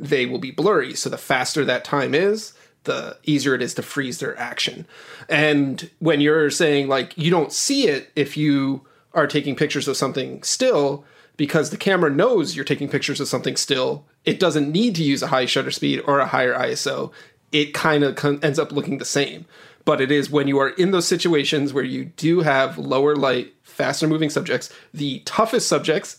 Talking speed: 200 wpm